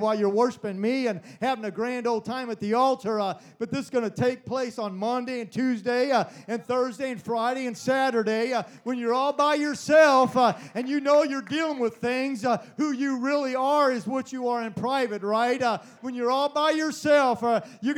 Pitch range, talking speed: 230-285 Hz, 220 wpm